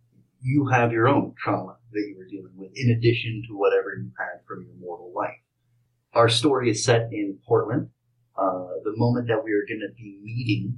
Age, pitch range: 30-49, 105-125 Hz